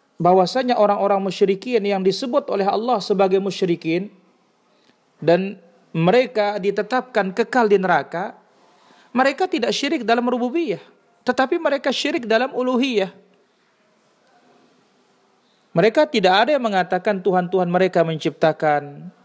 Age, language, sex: 40-59, Indonesian, male